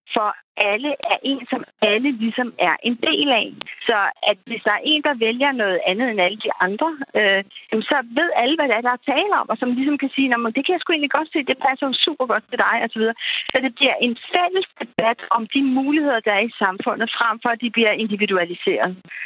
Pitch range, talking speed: 205-270 Hz, 240 wpm